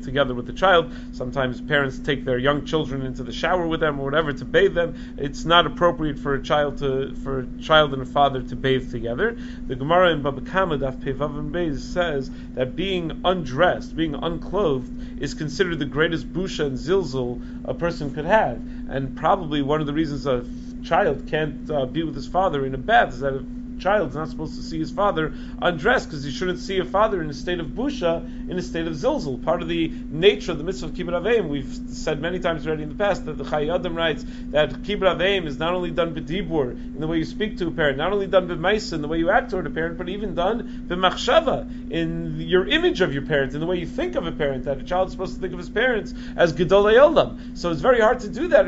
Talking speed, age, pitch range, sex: 235 wpm, 40-59, 130-200 Hz, male